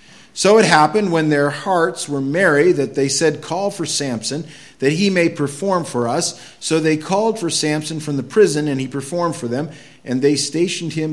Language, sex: English, male